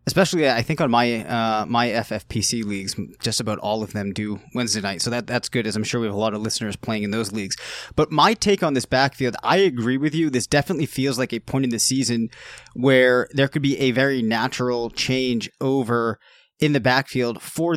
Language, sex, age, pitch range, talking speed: English, male, 20-39, 120-150 Hz, 225 wpm